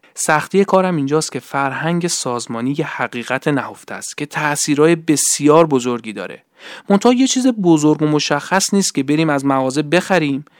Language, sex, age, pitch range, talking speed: Persian, male, 30-49, 130-165 Hz, 155 wpm